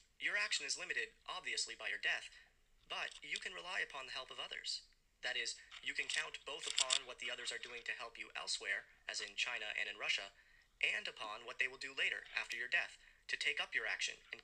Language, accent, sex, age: English, American, male, 30-49